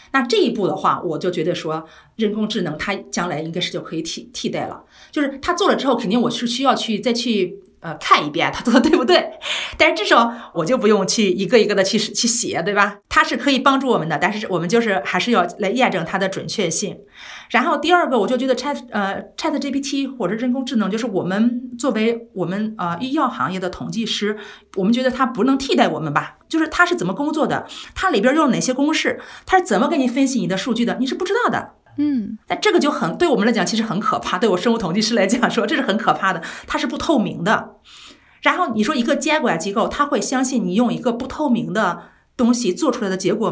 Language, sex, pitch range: Chinese, female, 200-275 Hz